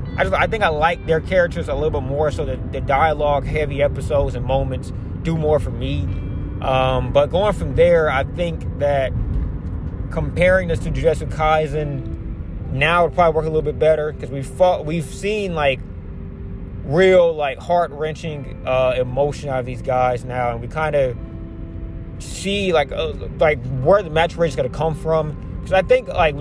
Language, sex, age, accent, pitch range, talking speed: English, male, 20-39, American, 120-155 Hz, 185 wpm